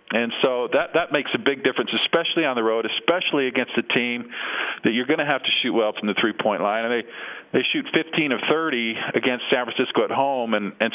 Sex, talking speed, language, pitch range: male, 230 wpm, English, 115-145 Hz